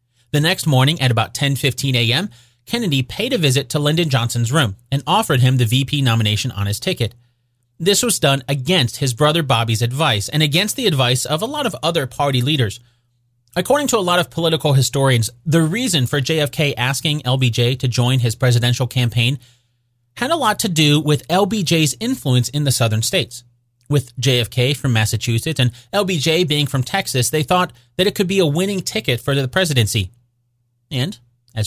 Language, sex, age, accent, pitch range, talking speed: English, male, 30-49, American, 120-155 Hz, 180 wpm